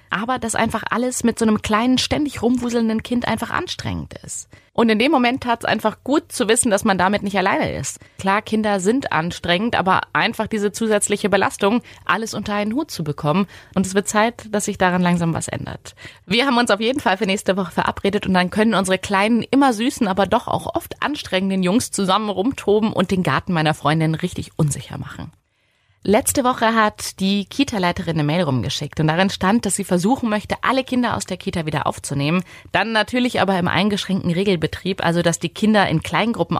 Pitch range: 165-215 Hz